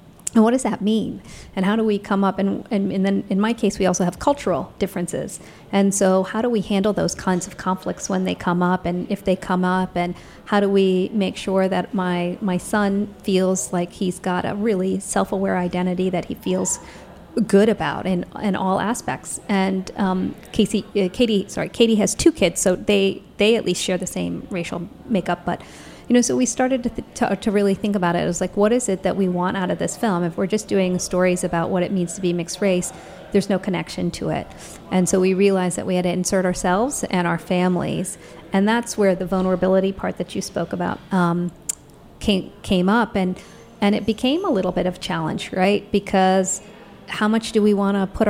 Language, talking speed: English, 220 wpm